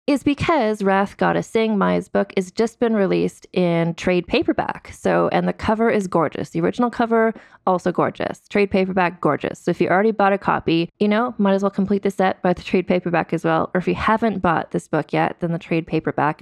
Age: 20-39